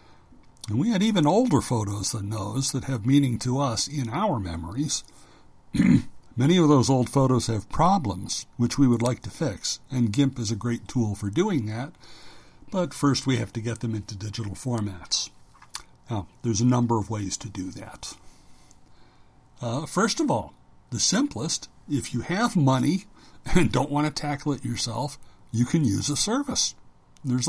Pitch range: 115-150 Hz